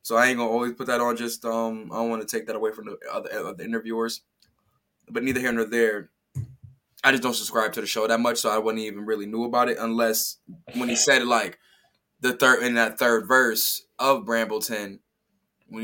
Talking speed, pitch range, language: 225 wpm, 125-170 Hz, English